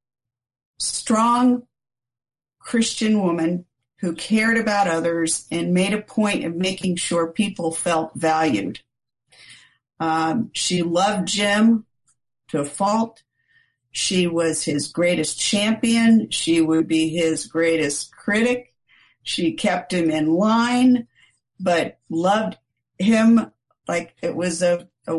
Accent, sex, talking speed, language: American, female, 110 wpm, English